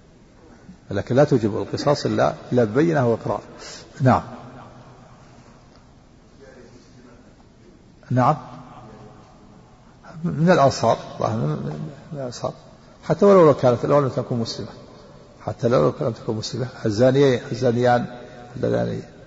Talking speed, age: 85 wpm, 50-69